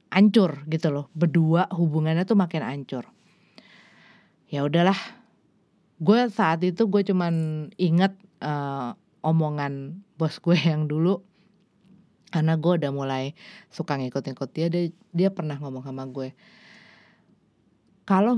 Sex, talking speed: female, 120 wpm